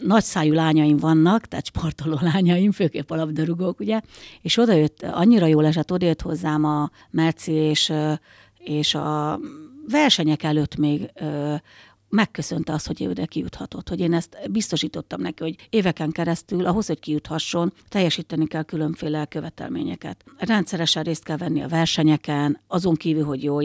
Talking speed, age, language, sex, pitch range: 135 wpm, 60-79, Hungarian, female, 150-175 Hz